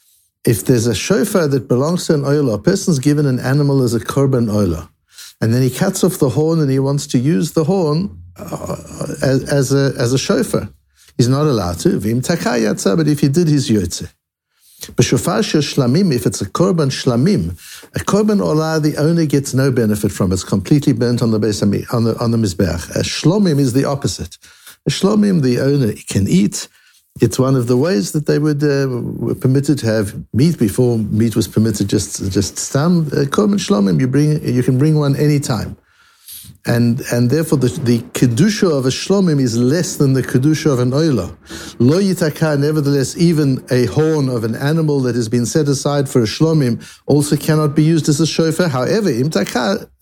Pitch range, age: 120-155 Hz, 60-79